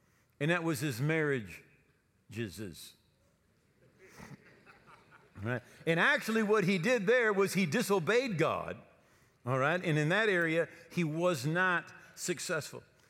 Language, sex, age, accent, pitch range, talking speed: English, male, 50-69, American, 140-200 Hz, 125 wpm